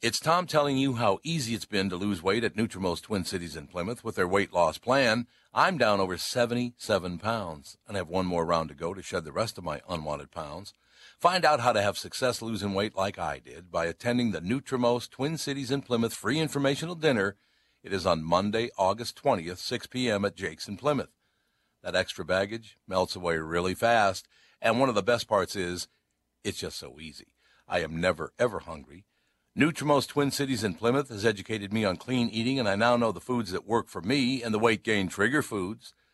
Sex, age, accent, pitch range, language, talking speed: male, 60-79, American, 90-125 Hz, English, 210 wpm